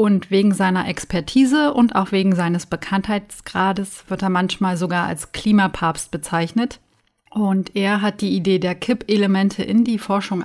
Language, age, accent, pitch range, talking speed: German, 30-49, German, 185-225 Hz, 150 wpm